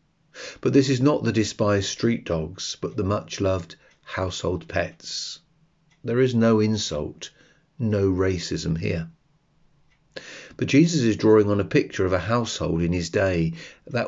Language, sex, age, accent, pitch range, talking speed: English, male, 40-59, British, 85-115 Hz, 145 wpm